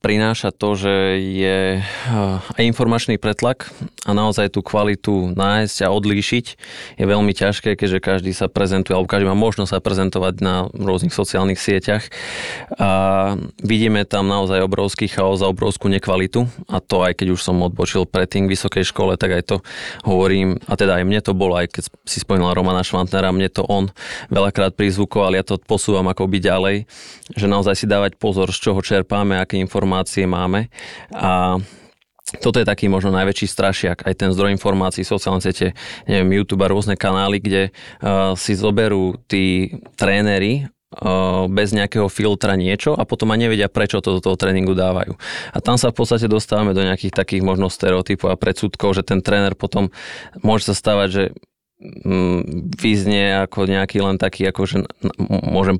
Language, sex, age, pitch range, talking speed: Slovak, male, 20-39, 95-105 Hz, 170 wpm